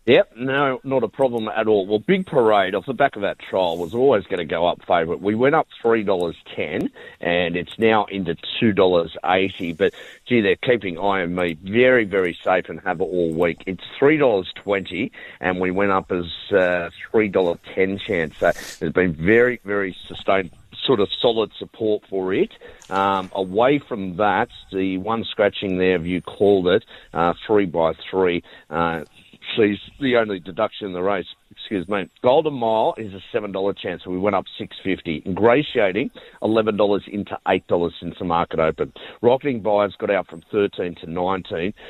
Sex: male